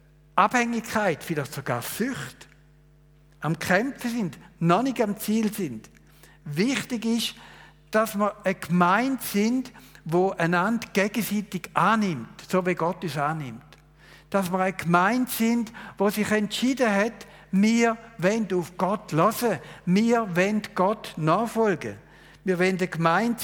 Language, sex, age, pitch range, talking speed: German, male, 60-79, 150-220 Hz, 130 wpm